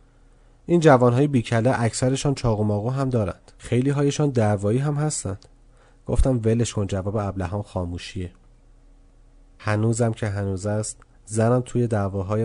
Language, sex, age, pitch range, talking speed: Persian, male, 30-49, 105-130 Hz, 130 wpm